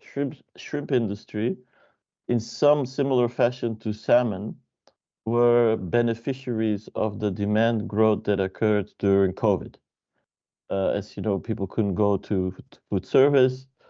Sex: male